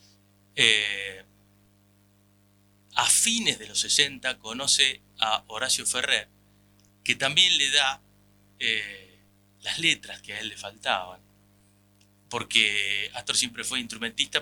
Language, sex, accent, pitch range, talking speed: Spanish, male, Argentinian, 100-120 Hz, 110 wpm